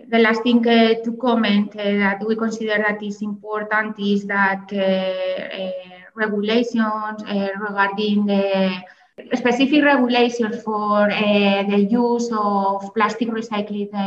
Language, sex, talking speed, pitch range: English, female, 130 wpm, 200-230 Hz